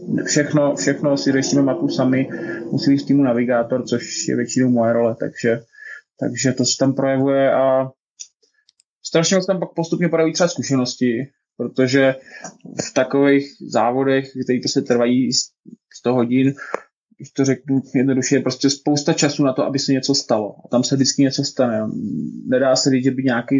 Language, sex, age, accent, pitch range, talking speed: Czech, male, 20-39, native, 125-140 Hz, 170 wpm